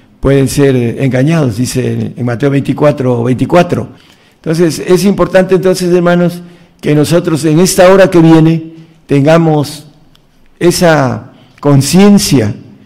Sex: male